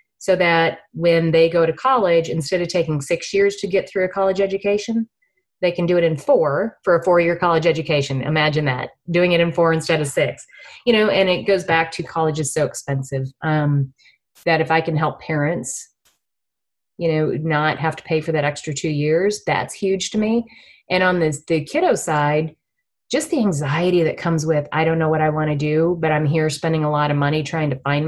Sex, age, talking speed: female, 30-49, 220 wpm